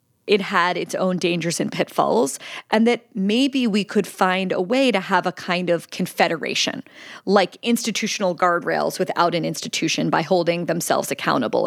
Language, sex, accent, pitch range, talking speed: English, female, American, 170-215 Hz, 160 wpm